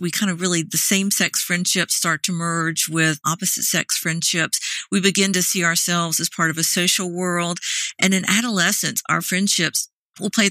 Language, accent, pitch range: English, American, 170-195 Hz